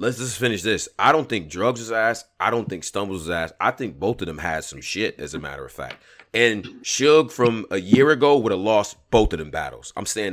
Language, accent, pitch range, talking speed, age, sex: English, American, 100-125 Hz, 255 wpm, 30-49, male